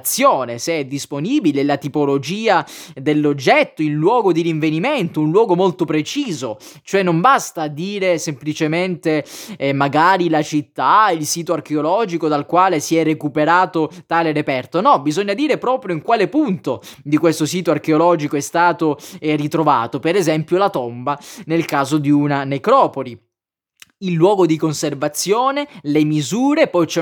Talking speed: 140 wpm